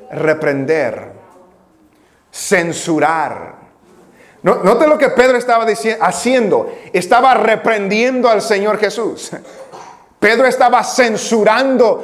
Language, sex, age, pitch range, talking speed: English, male, 40-59, 200-275 Hz, 85 wpm